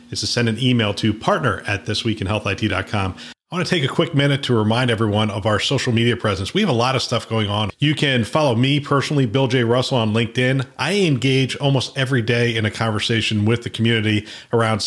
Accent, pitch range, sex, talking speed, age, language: American, 115-135 Hz, male, 220 wpm, 40-59, English